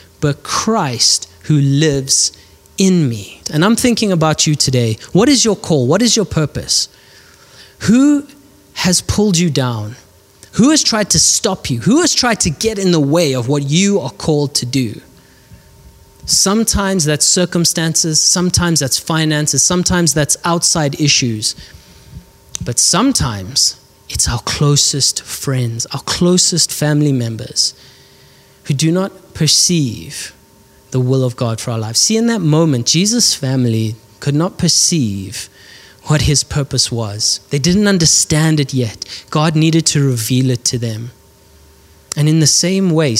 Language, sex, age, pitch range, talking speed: English, male, 20-39, 115-170 Hz, 150 wpm